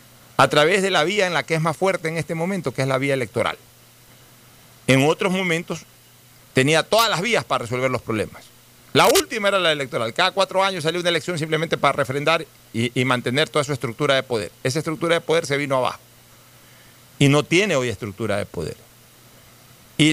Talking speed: 200 wpm